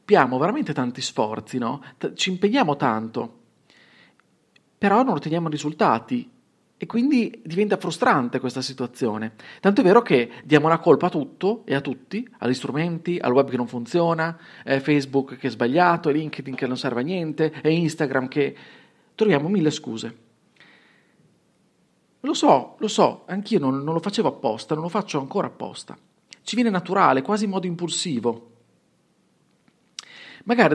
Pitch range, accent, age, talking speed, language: 130-190 Hz, native, 40-59, 140 wpm, Italian